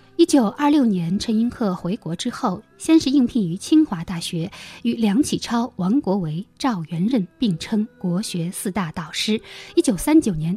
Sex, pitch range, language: female, 175-245 Hz, Chinese